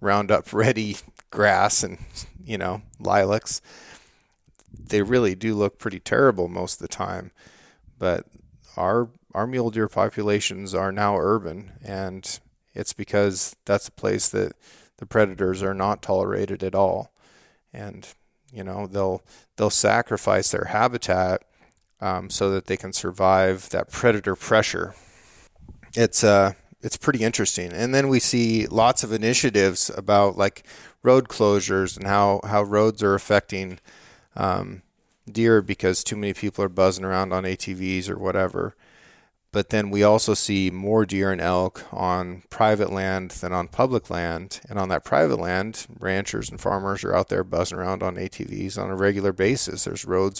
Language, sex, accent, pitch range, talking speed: English, male, American, 95-110 Hz, 155 wpm